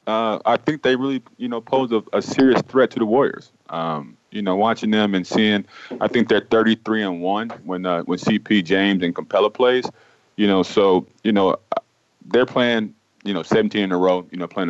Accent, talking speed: American, 210 wpm